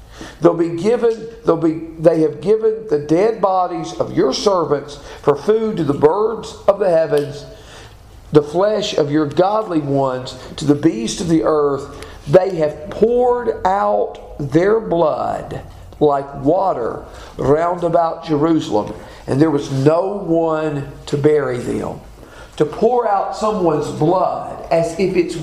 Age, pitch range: 50-69, 150-215 Hz